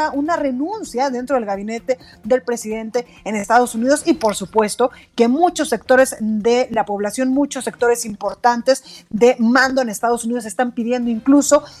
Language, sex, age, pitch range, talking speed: Spanish, female, 30-49, 225-285 Hz, 155 wpm